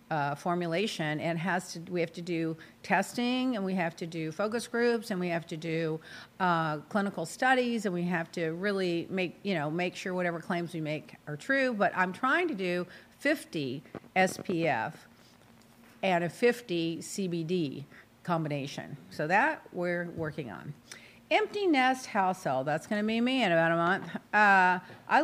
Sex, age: female, 50-69